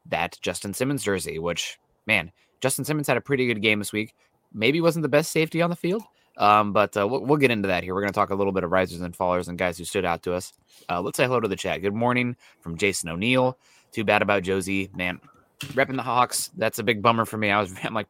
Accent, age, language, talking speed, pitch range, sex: American, 20-39, English, 265 wpm, 95-110 Hz, male